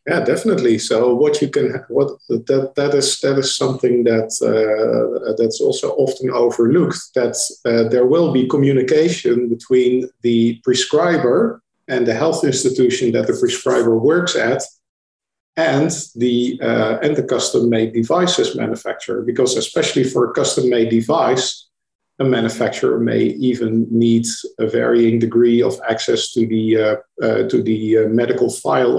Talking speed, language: 145 wpm, English